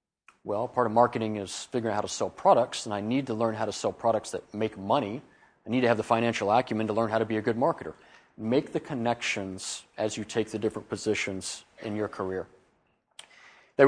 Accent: American